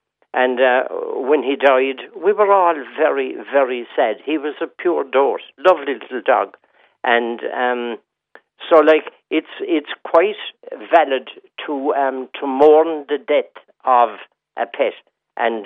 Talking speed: 140 wpm